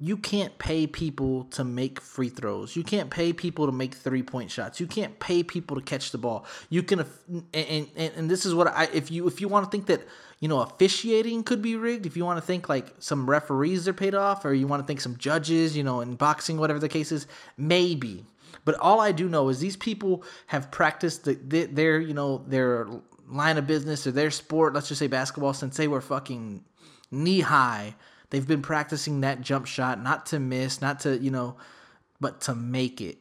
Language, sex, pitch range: English, male, 130-165 Hz